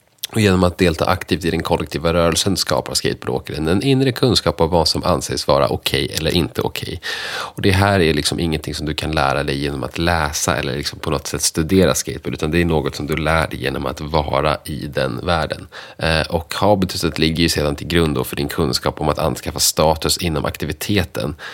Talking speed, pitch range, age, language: 215 wpm, 75-95 Hz, 30-49, Swedish